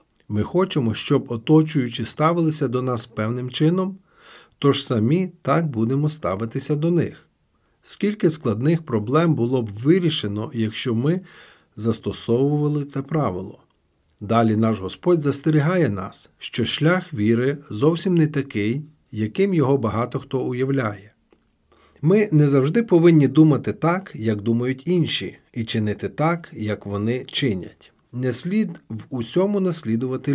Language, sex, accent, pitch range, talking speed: Ukrainian, male, native, 110-160 Hz, 125 wpm